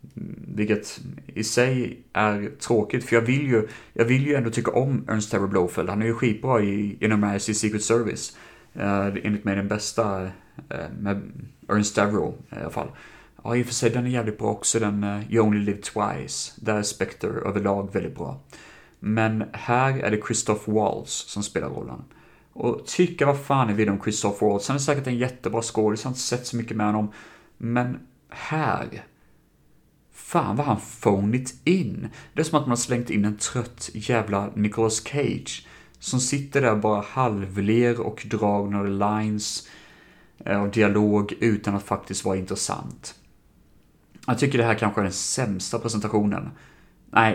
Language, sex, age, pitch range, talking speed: Swedish, male, 30-49, 100-120 Hz, 170 wpm